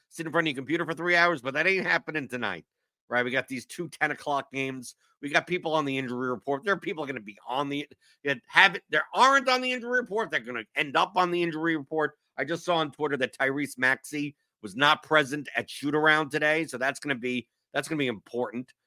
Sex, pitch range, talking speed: male, 130-170 Hz, 250 wpm